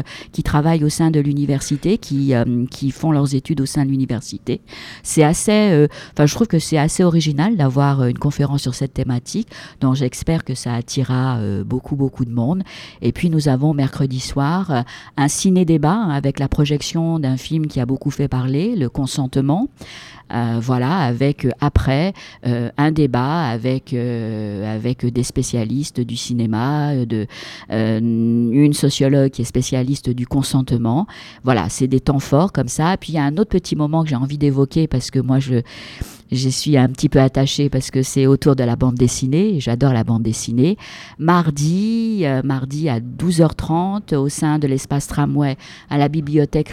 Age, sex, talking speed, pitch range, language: 50-69, female, 185 wpm, 130-165 Hz, French